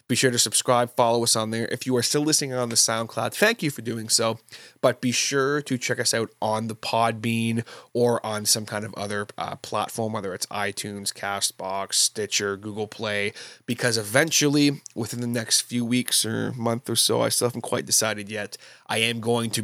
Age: 20-39